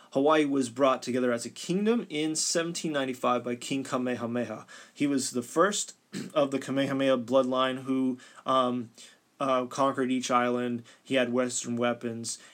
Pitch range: 125-140 Hz